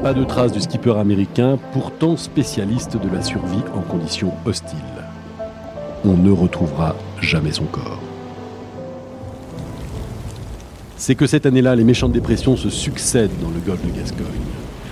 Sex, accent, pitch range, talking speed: male, French, 95-125 Hz, 135 wpm